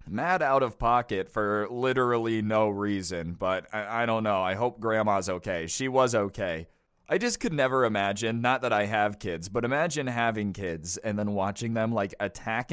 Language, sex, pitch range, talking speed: English, male, 105-125 Hz, 190 wpm